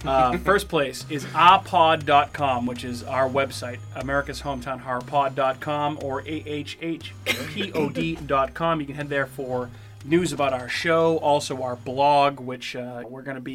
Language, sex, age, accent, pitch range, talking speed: English, male, 30-49, American, 130-155 Hz, 140 wpm